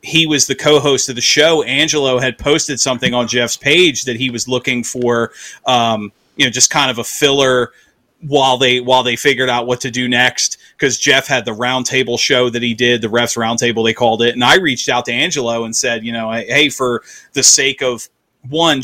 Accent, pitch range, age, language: American, 120-135 Hz, 30-49, English